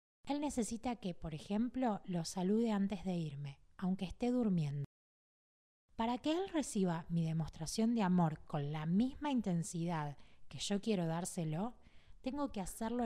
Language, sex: Spanish, female